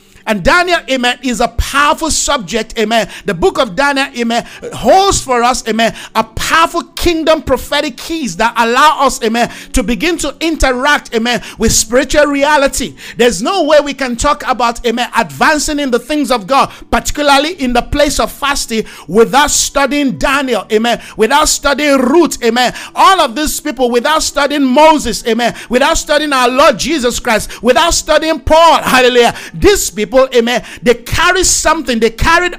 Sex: male